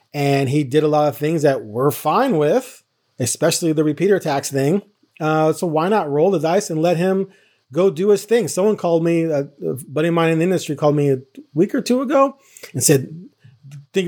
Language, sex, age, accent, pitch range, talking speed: English, male, 30-49, American, 140-175 Hz, 215 wpm